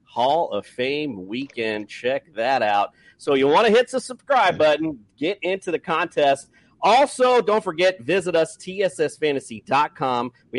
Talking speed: 145 wpm